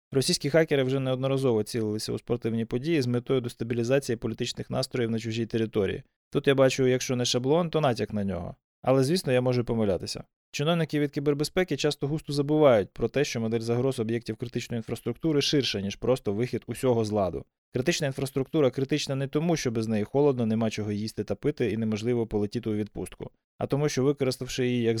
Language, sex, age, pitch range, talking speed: Ukrainian, male, 20-39, 115-145 Hz, 185 wpm